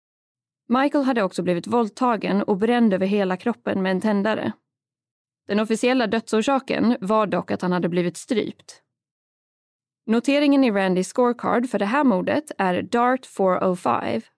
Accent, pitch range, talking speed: native, 190-255 Hz, 140 wpm